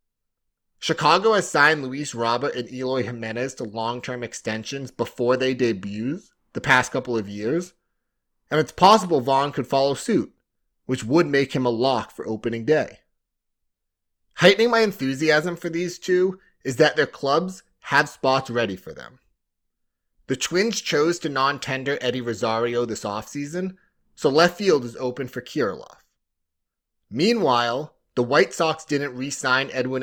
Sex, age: male, 30-49